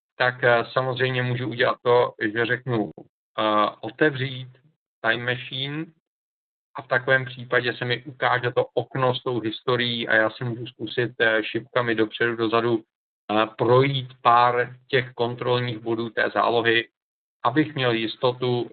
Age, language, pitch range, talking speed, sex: 50-69, Czech, 115-125 Hz, 135 wpm, male